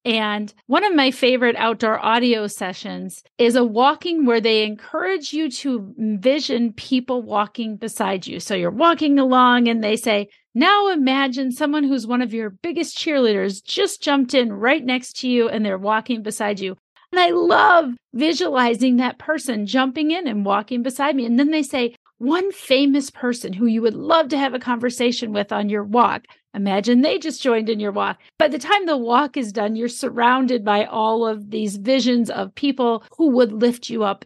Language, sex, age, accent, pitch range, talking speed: English, female, 40-59, American, 215-270 Hz, 190 wpm